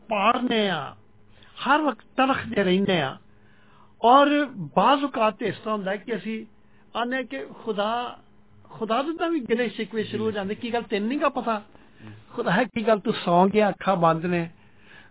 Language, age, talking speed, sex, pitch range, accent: English, 50-69, 90 wpm, male, 140-220 Hz, Indian